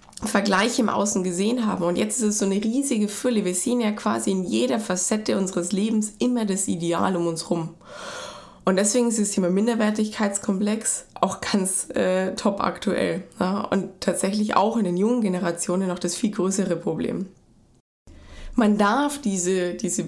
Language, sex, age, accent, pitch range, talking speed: German, female, 20-39, German, 180-220 Hz, 165 wpm